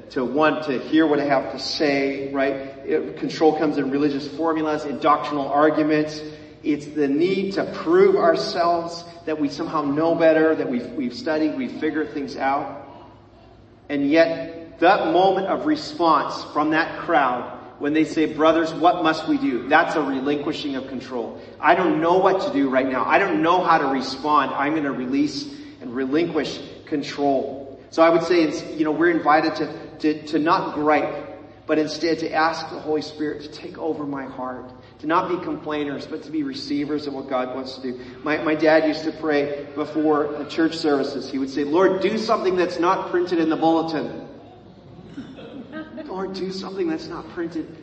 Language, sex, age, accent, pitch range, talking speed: English, male, 40-59, American, 140-165 Hz, 185 wpm